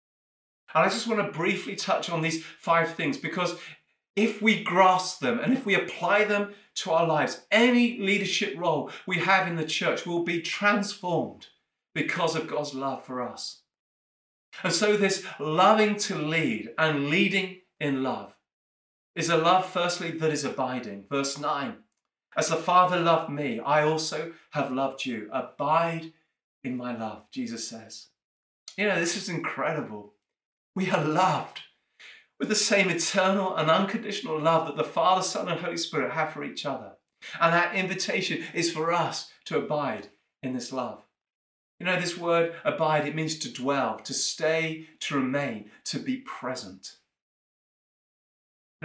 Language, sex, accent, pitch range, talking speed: English, male, British, 145-185 Hz, 160 wpm